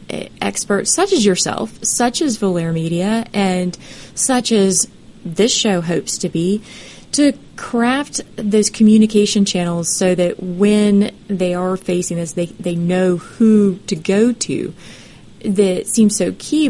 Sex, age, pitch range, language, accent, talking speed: female, 30-49, 180-230 Hz, English, American, 140 wpm